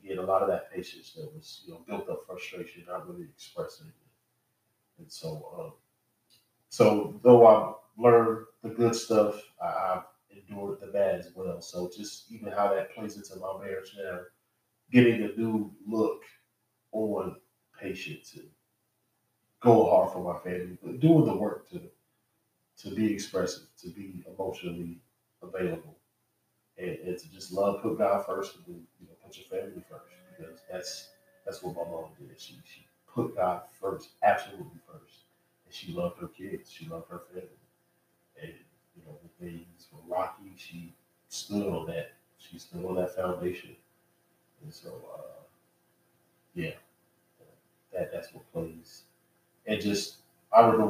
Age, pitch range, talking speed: 30-49, 90-120 Hz, 155 wpm